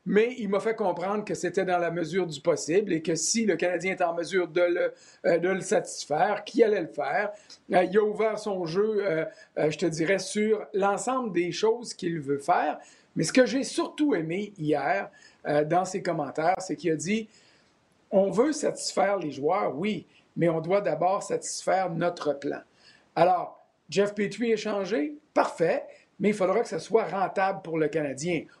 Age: 50-69